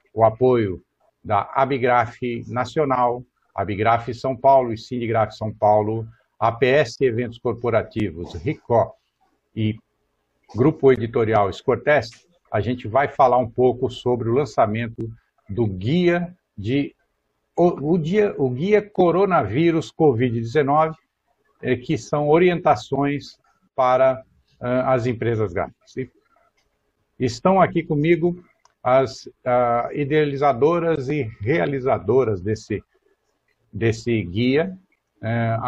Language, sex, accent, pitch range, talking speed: Portuguese, male, Brazilian, 110-140 Hz, 95 wpm